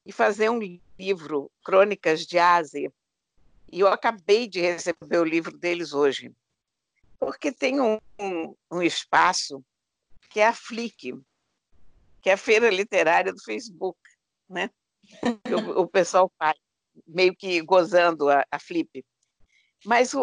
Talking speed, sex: 130 wpm, female